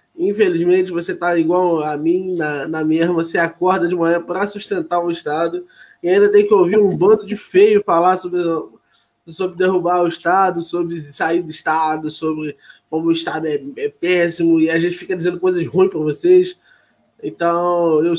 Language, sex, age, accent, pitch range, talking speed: Portuguese, male, 20-39, Brazilian, 170-215 Hz, 180 wpm